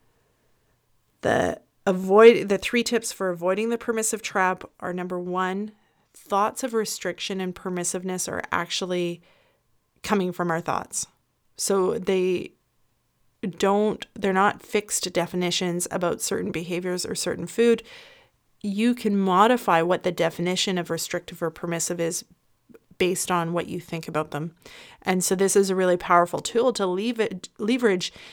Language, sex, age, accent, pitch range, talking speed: English, female, 30-49, American, 175-205 Hz, 140 wpm